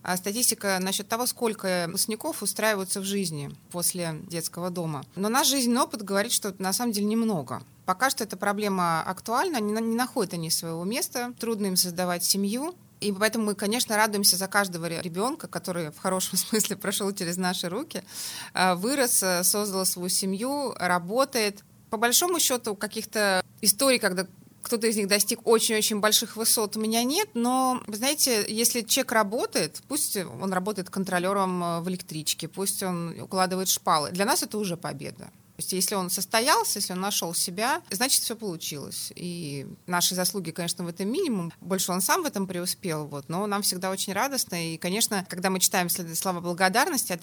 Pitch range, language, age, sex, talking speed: 180-225 Hz, Russian, 20-39, female, 165 wpm